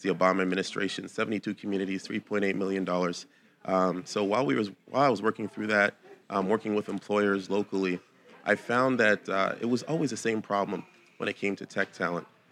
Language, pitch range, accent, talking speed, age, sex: English, 95-110 Hz, American, 185 wpm, 30-49, male